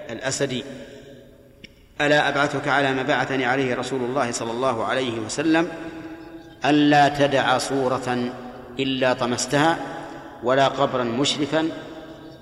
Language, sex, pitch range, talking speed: Arabic, male, 125-145 Hz, 100 wpm